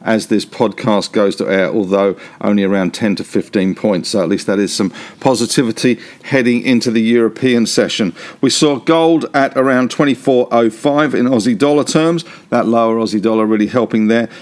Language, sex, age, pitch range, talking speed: English, male, 50-69, 110-135 Hz, 175 wpm